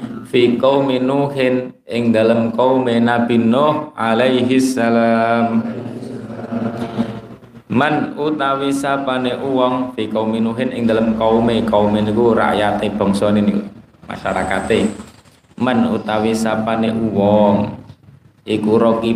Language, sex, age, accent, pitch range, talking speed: Indonesian, male, 20-39, native, 110-120 Hz, 95 wpm